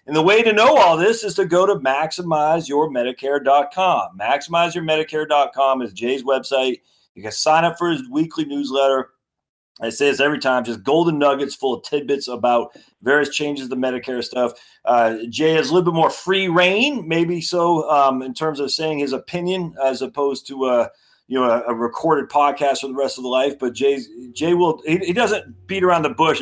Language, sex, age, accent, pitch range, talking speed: English, male, 40-59, American, 125-165 Hz, 185 wpm